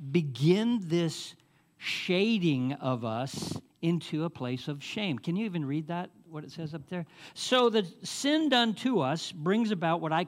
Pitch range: 145-200 Hz